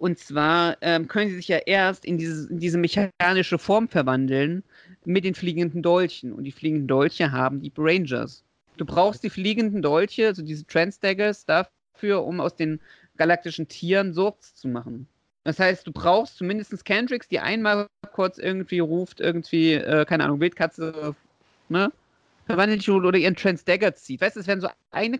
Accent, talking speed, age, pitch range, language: German, 170 wpm, 40-59, 150-195 Hz, German